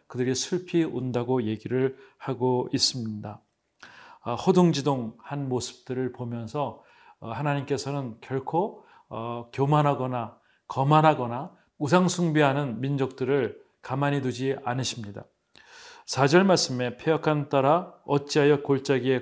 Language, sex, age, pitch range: Korean, male, 40-59, 125-155 Hz